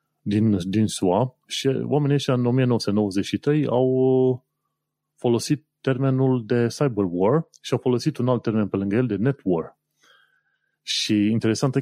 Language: Romanian